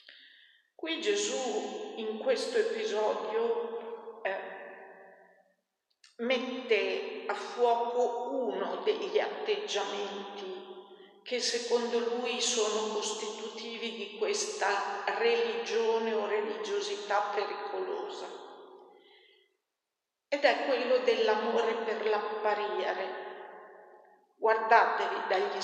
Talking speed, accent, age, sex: 75 wpm, native, 50-69, female